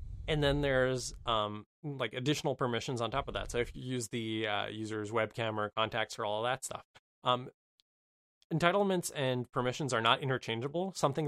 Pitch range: 110-135 Hz